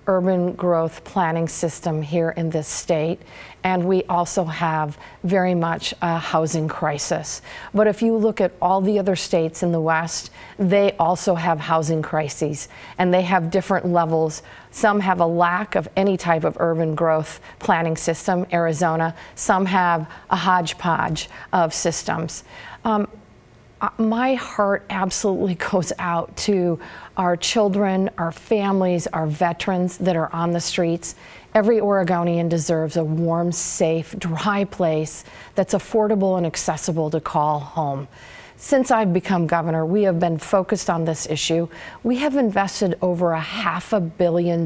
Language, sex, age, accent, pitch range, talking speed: English, female, 40-59, American, 165-195 Hz, 145 wpm